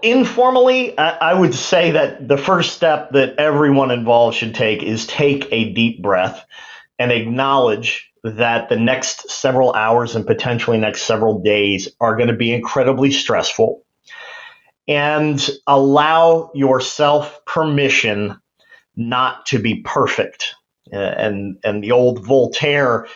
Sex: male